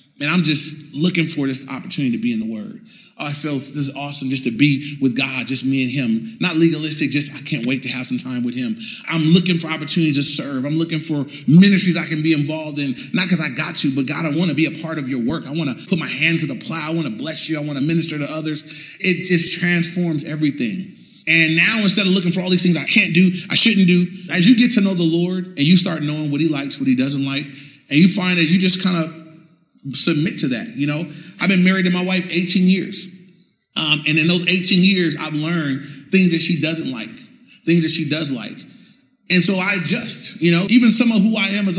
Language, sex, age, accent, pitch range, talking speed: English, male, 30-49, American, 150-190 Hz, 255 wpm